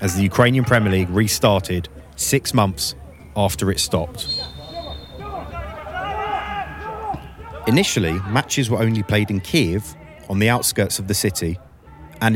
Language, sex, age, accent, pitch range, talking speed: English, male, 30-49, British, 90-115 Hz, 120 wpm